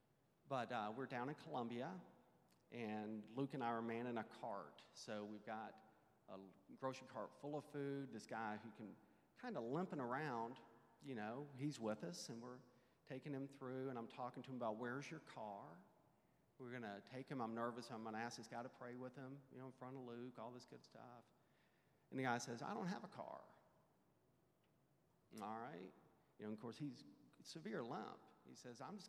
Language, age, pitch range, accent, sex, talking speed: English, 40-59, 110-140 Hz, American, male, 205 wpm